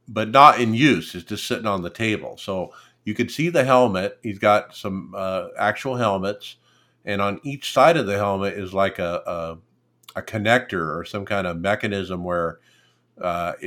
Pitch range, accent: 95-110 Hz, American